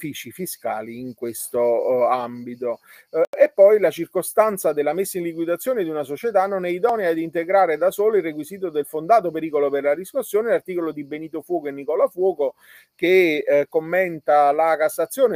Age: 40-59